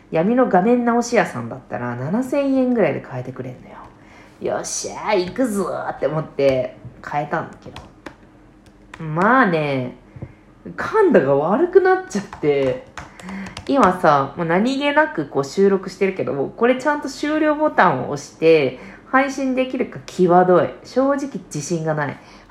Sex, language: female, Japanese